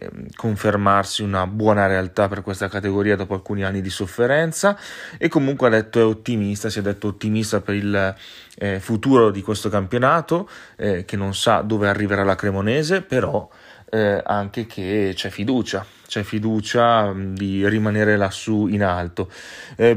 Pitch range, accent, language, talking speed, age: 95-110 Hz, native, Italian, 155 wpm, 30-49